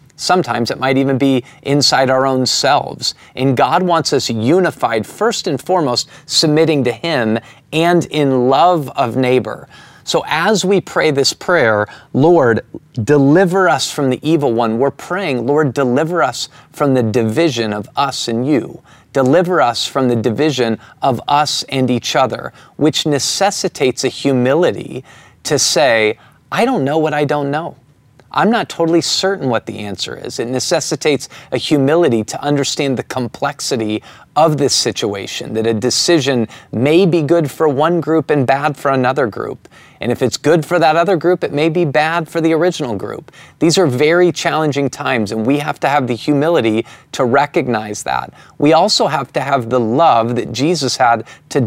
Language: English